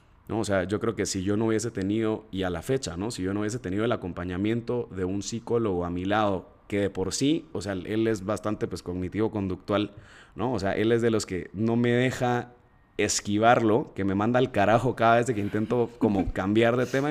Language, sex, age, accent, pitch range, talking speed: Spanish, male, 30-49, Mexican, 100-125 Hz, 230 wpm